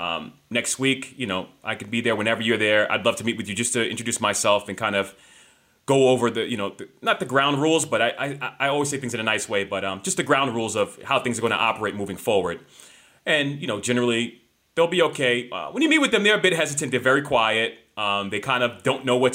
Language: English